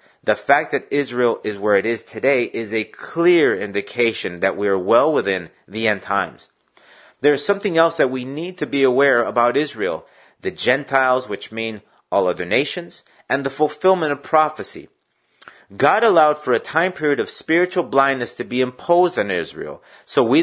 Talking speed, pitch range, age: 175 wpm, 115-150 Hz, 30-49